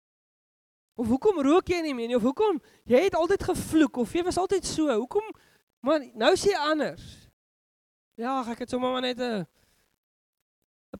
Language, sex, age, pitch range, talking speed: English, male, 20-39, 170-260 Hz, 190 wpm